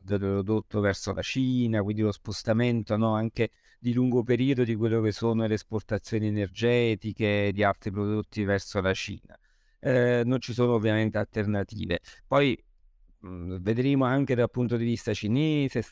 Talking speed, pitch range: 150 wpm, 105-115 Hz